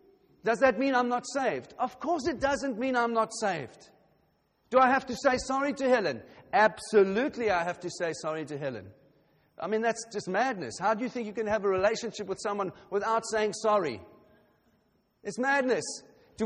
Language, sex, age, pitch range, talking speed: English, male, 50-69, 175-245 Hz, 190 wpm